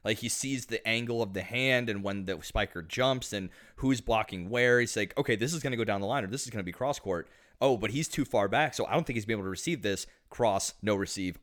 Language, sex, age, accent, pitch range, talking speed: English, male, 30-49, American, 100-130 Hz, 290 wpm